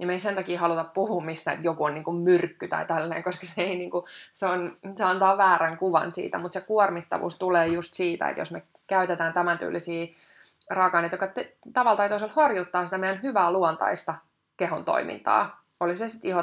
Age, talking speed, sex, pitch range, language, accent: 20-39, 200 wpm, female, 170-190 Hz, Finnish, native